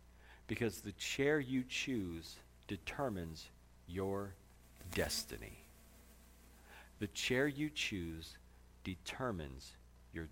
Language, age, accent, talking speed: English, 50-69, American, 80 wpm